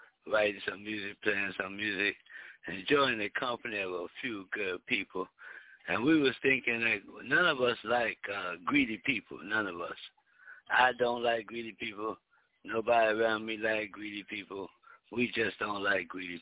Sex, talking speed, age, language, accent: male, 170 wpm, 60-79, English, American